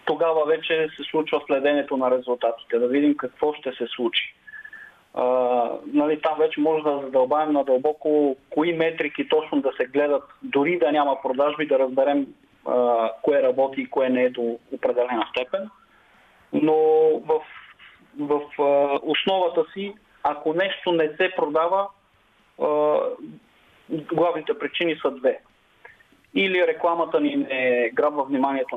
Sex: male